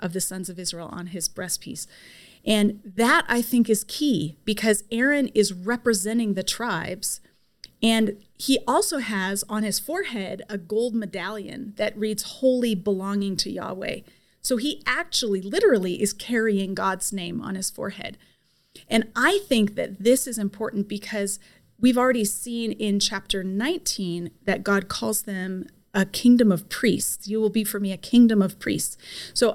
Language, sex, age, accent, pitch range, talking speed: English, female, 30-49, American, 195-230 Hz, 160 wpm